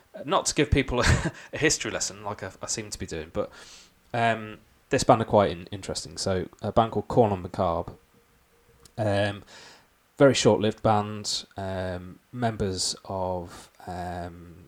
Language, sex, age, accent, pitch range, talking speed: English, male, 20-39, British, 90-110 Hz, 155 wpm